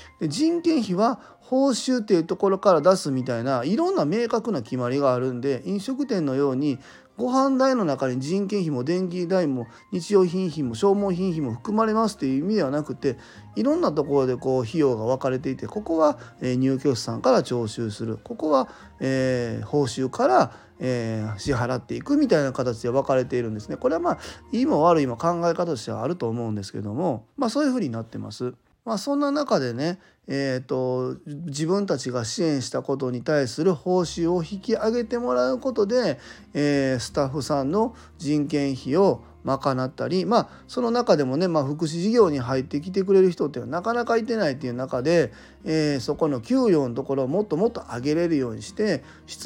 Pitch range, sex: 125-195 Hz, male